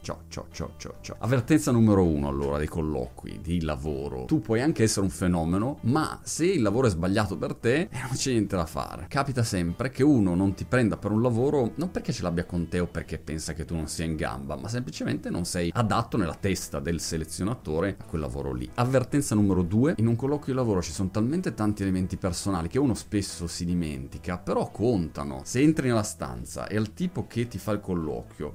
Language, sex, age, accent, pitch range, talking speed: Italian, male, 30-49, native, 85-115 Hz, 210 wpm